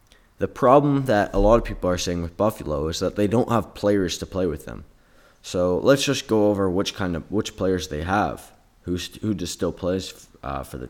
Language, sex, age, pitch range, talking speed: English, male, 20-39, 90-105 Hz, 225 wpm